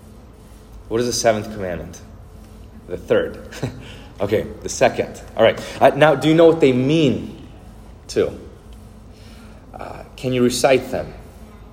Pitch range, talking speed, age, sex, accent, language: 105-130 Hz, 130 wpm, 30-49, male, American, English